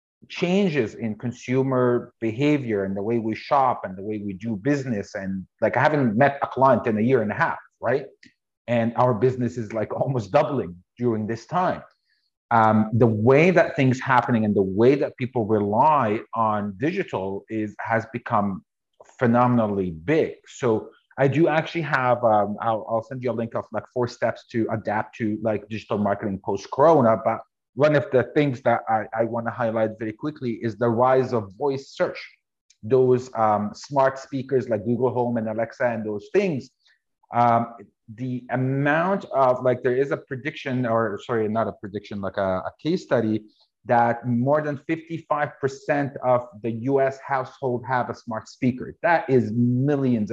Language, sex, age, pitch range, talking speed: English, male, 30-49, 110-135 Hz, 175 wpm